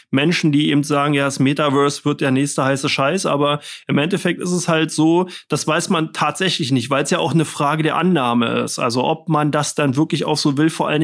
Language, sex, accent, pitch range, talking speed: German, male, German, 140-165 Hz, 240 wpm